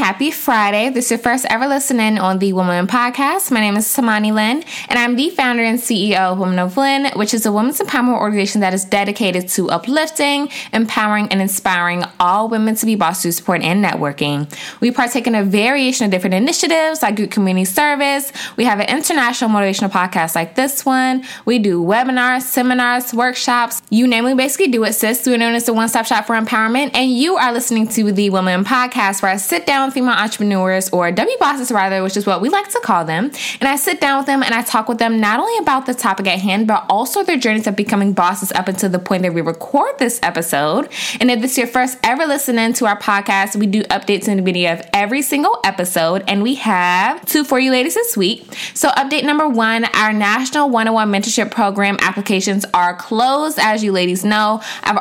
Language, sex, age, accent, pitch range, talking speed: English, female, 20-39, American, 200-260 Hz, 220 wpm